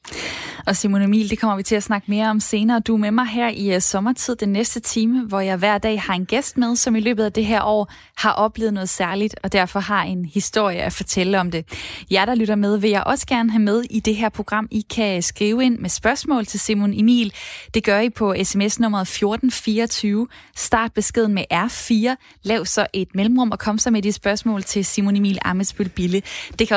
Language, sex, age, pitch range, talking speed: Danish, female, 20-39, 195-240 Hz, 225 wpm